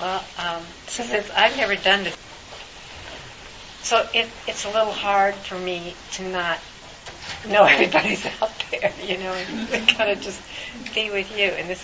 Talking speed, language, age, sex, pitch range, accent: 160 wpm, English, 60-79, female, 175-220 Hz, American